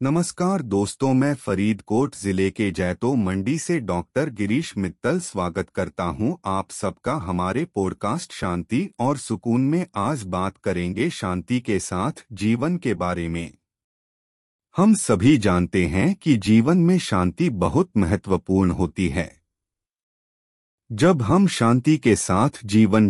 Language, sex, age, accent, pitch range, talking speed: Hindi, male, 30-49, native, 90-135 Hz, 130 wpm